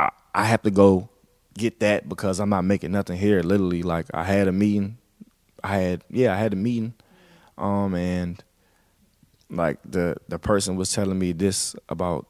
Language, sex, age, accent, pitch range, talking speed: English, male, 20-39, American, 90-105 Hz, 175 wpm